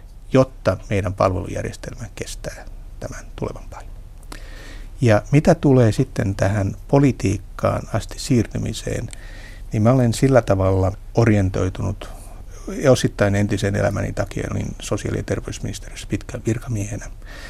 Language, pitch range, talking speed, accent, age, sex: Finnish, 100-115 Hz, 105 wpm, native, 60-79, male